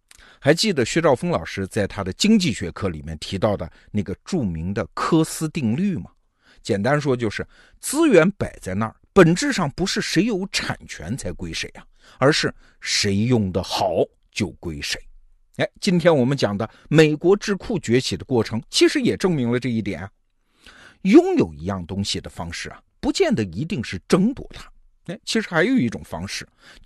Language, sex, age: Chinese, male, 50-69